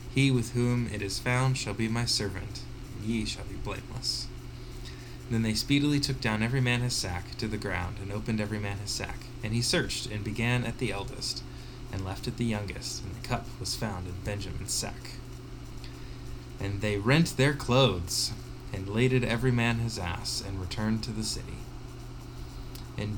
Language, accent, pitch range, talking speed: English, American, 110-125 Hz, 185 wpm